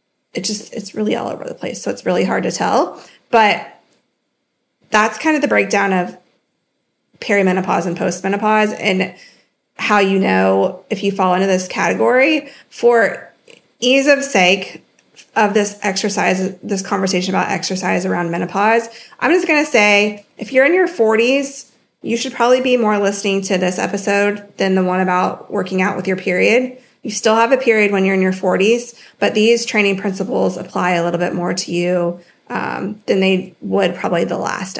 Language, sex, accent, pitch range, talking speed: English, female, American, 185-235 Hz, 175 wpm